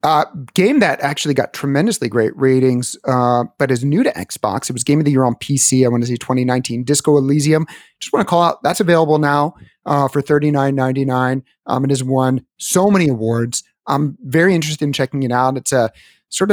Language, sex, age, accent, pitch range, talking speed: English, male, 30-49, American, 130-165 Hz, 205 wpm